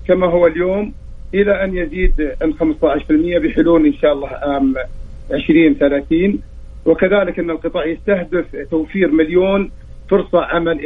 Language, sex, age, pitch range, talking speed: Arabic, male, 50-69, 150-185 Hz, 120 wpm